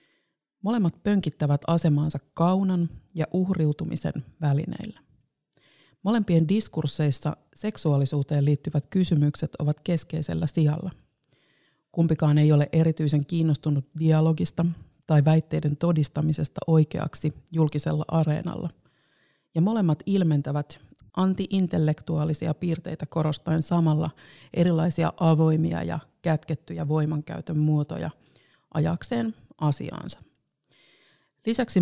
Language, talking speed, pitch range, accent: Finnish, 80 wpm, 150-170 Hz, native